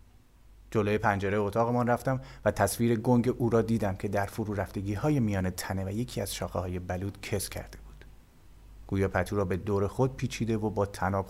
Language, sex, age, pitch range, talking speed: Persian, male, 30-49, 95-115 Hz, 185 wpm